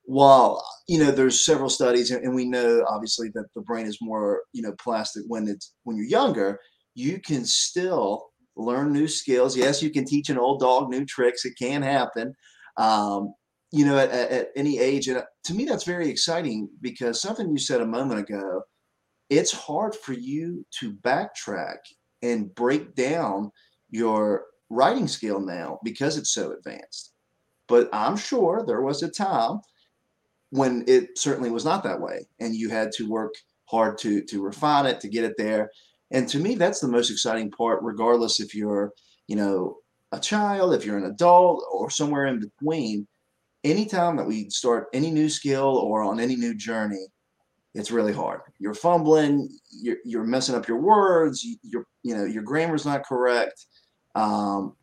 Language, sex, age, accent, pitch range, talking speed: English, male, 30-49, American, 110-155 Hz, 175 wpm